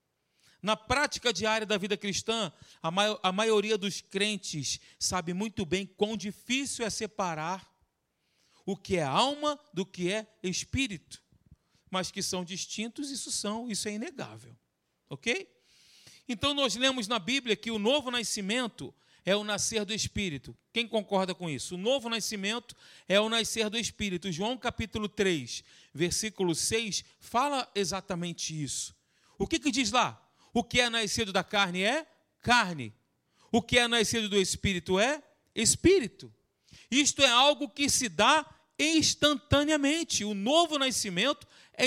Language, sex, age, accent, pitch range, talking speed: Portuguese, male, 40-59, Brazilian, 190-260 Hz, 145 wpm